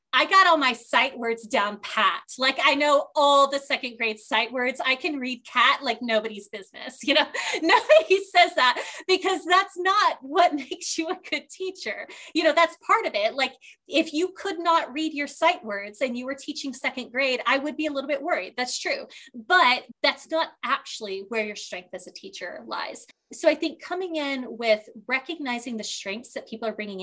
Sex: female